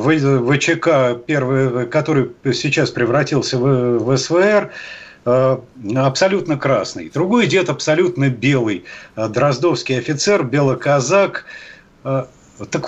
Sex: male